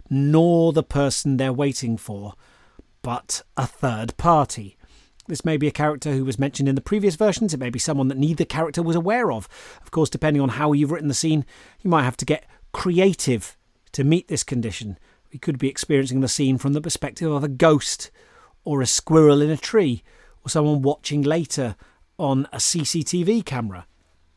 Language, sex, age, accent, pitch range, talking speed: English, male, 30-49, British, 130-170 Hz, 190 wpm